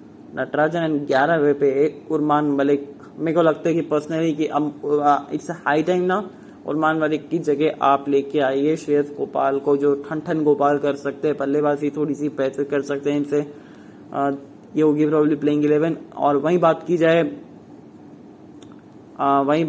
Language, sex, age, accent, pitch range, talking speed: English, male, 20-39, Indian, 145-160 Hz, 155 wpm